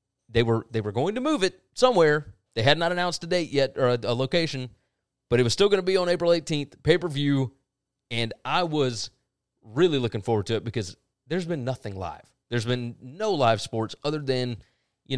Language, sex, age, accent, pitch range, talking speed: English, male, 30-49, American, 115-145 Hz, 205 wpm